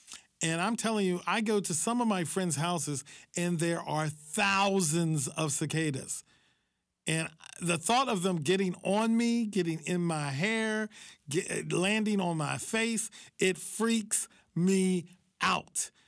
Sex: male